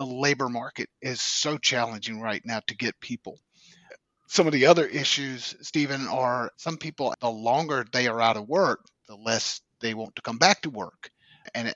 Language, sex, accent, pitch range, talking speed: English, male, American, 120-140 Hz, 190 wpm